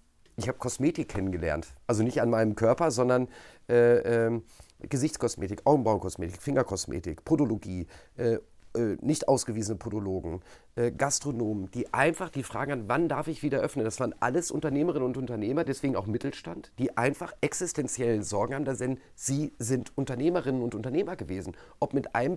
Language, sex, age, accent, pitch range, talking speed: German, male, 40-59, German, 115-155 Hz, 155 wpm